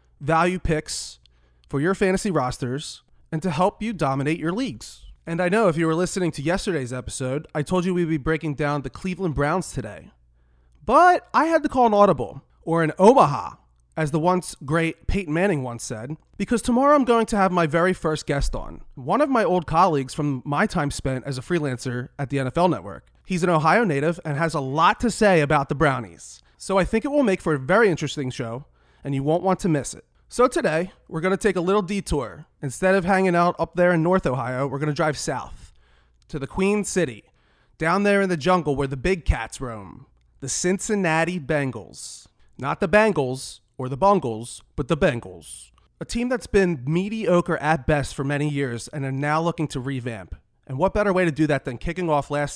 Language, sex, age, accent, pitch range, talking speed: English, male, 30-49, American, 135-185 Hz, 210 wpm